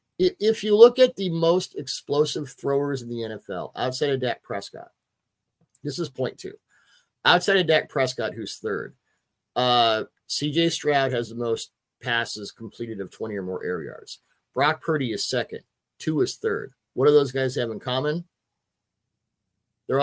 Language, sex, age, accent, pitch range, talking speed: English, male, 50-69, American, 115-155 Hz, 160 wpm